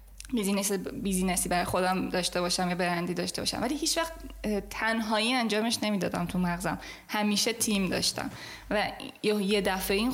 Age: 10-29